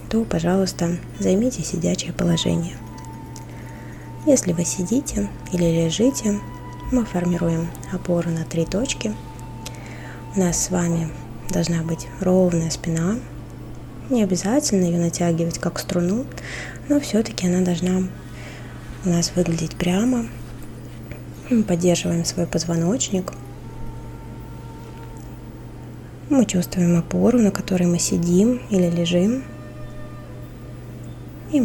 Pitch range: 165-190 Hz